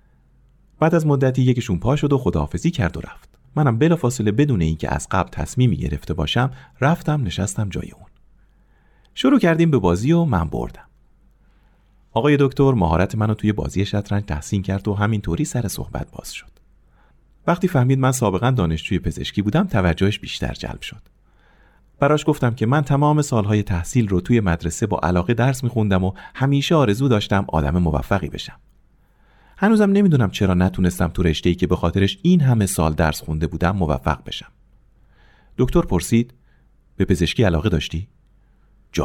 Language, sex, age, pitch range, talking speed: Persian, male, 40-59, 90-135 Hz, 160 wpm